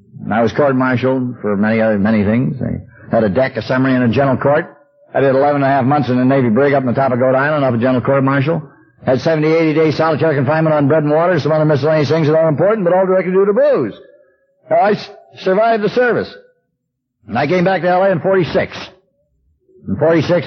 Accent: American